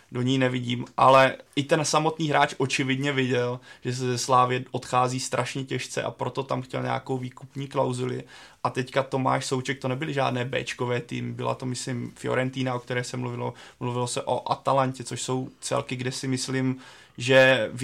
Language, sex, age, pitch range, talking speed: Czech, male, 20-39, 125-130 Hz, 180 wpm